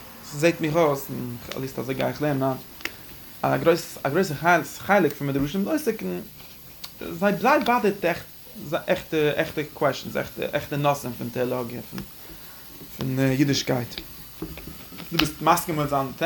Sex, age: male, 20-39